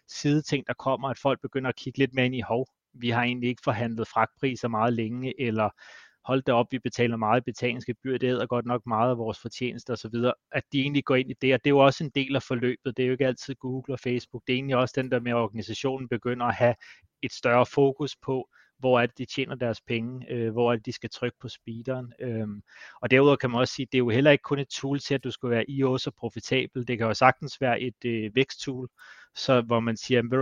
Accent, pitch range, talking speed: native, 120-135 Hz, 245 wpm